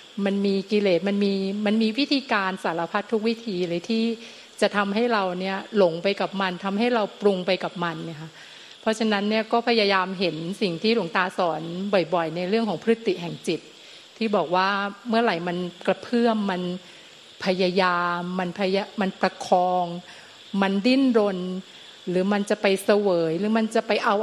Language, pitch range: Thai, 185-225 Hz